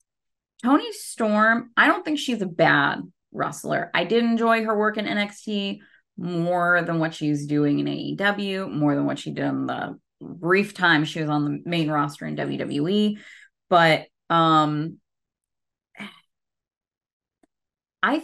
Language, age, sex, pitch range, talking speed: English, 20-39, female, 160-235 Hz, 140 wpm